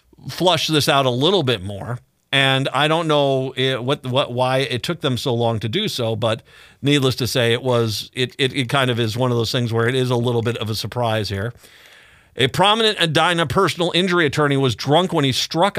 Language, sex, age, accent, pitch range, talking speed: English, male, 50-69, American, 125-150 Hz, 230 wpm